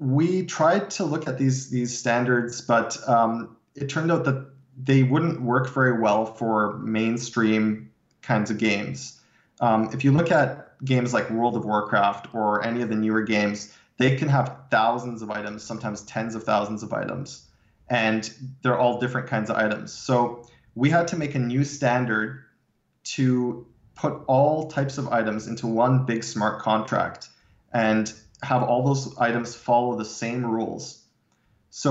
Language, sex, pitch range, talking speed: English, male, 110-130 Hz, 165 wpm